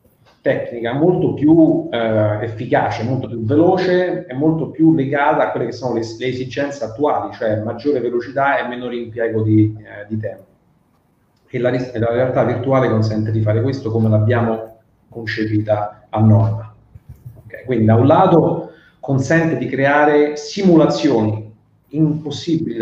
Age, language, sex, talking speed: 30-49, Italian, male, 145 wpm